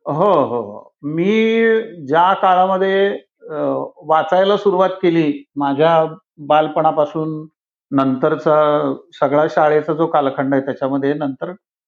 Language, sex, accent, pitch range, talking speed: Marathi, male, native, 165-215 Hz, 90 wpm